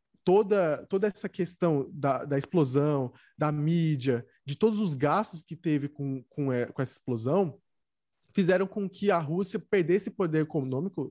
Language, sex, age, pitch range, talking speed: Portuguese, male, 20-39, 145-200 Hz, 150 wpm